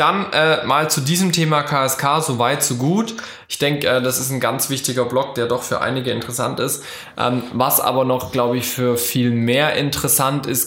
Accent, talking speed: German, 200 wpm